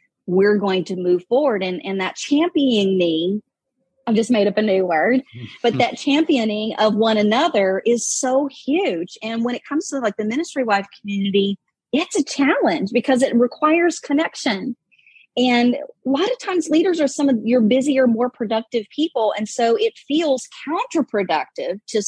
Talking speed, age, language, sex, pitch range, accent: 170 wpm, 40-59, English, female, 190-250 Hz, American